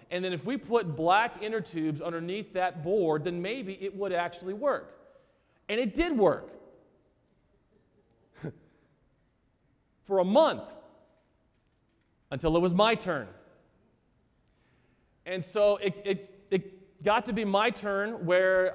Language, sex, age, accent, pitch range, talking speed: English, male, 40-59, American, 170-200 Hz, 130 wpm